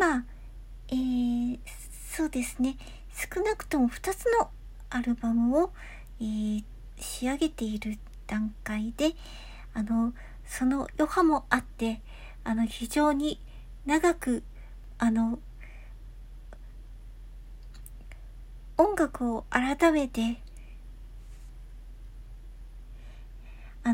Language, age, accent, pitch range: Japanese, 60-79, native, 205-290 Hz